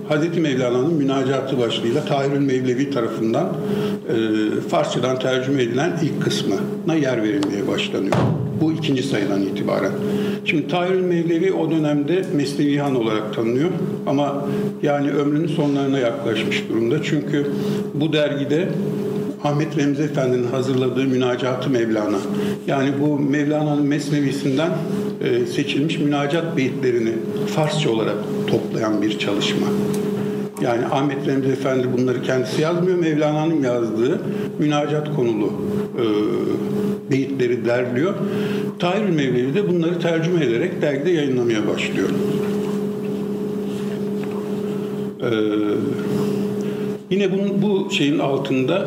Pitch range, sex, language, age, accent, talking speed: 130-195 Hz, male, Turkish, 60-79, native, 100 wpm